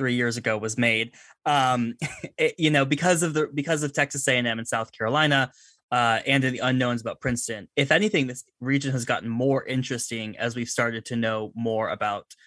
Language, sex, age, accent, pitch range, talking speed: English, male, 20-39, American, 115-135 Hz, 190 wpm